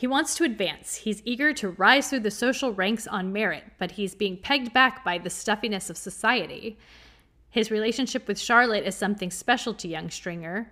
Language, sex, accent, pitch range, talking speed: English, female, American, 190-245 Hz, 190 wpm